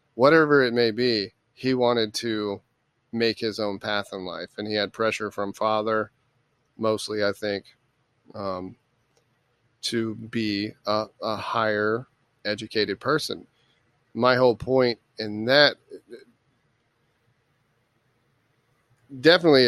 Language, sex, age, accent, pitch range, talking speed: English, male, 30-49, American, 110-125 Hz, 110 wpm